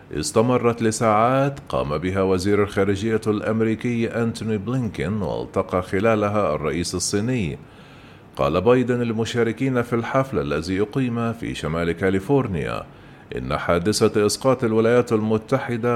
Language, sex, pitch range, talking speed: Arabic, male, 95-120 Hz, 105 wpm